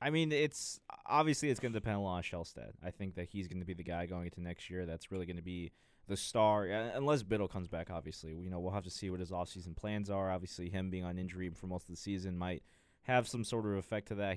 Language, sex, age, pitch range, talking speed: English, male, 20-39, 90-105 Hz, 275 wpm